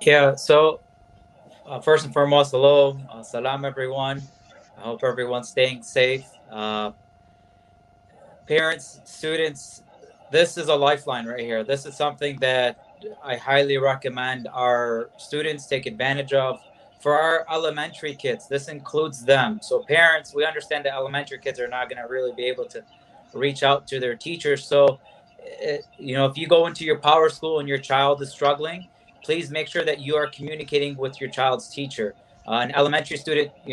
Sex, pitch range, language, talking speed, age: male, 130-155 Hz, English, 165 wpm, 20-39